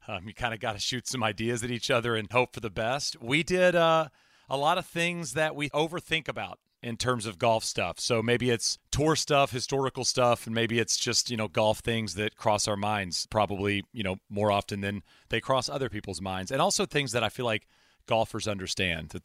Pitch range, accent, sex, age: 105-130 Hz, American, male, 40-59